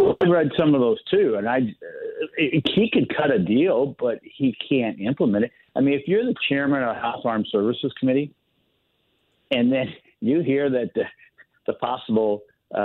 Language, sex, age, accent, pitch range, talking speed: English, male, 50-69, American, 115-150 Hz, 180 wpm